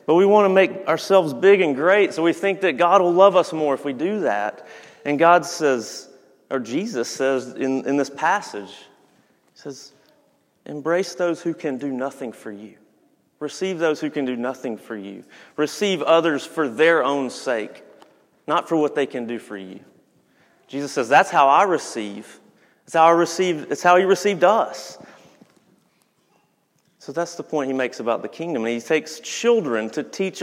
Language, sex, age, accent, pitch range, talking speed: English, male, 30-49, American, 135-180 Hz, 180 wpm